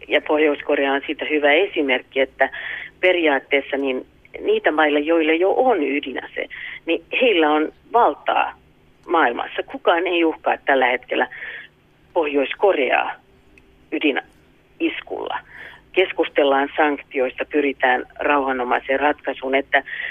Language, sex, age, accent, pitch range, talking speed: Finnish, female, 40-59, native, 140-180 Hz, 100 wpm